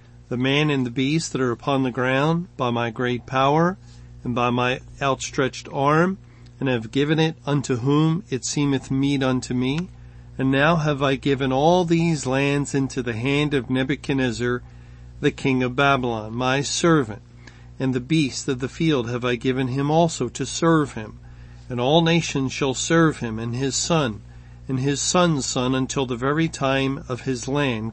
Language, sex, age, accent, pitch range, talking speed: English, male, 40-59, American, 120-150 Hz, 180 wpm